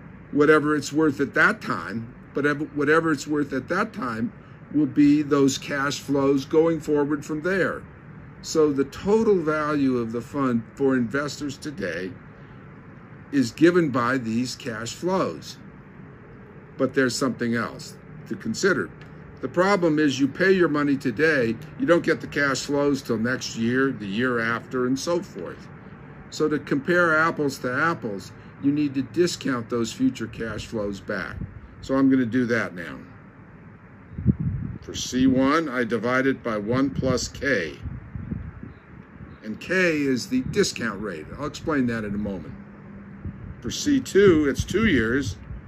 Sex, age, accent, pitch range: male, 50-69, American, 120-155 Hz